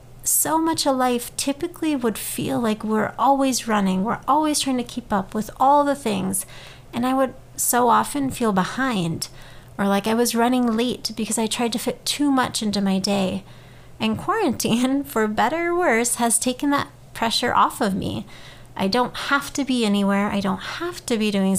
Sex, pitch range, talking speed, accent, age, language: female, 200-270 Hz, 190 wpm, American, 30-49, English